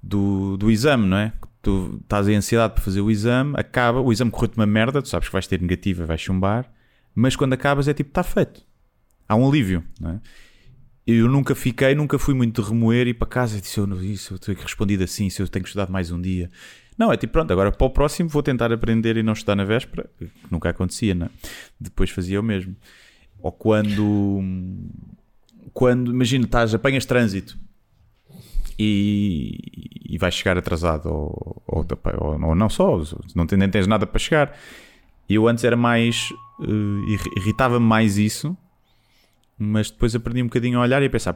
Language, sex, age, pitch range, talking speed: Portuguese, male, 20-39, 95-120 Hz, 190 wpm